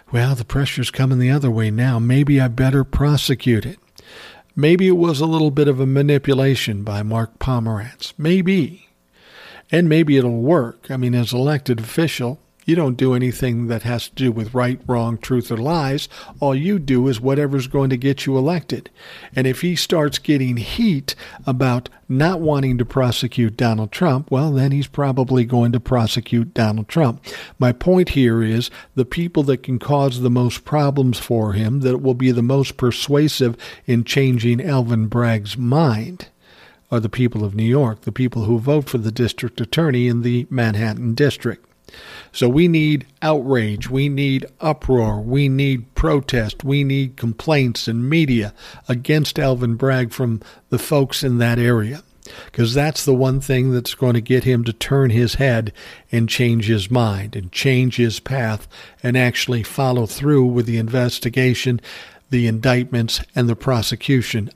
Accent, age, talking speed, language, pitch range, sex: American, 50-69, 170 wpm, English, 120-140 Hz, male